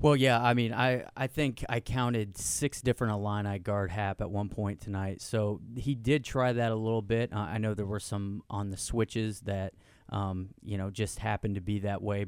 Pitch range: 100-115 Hz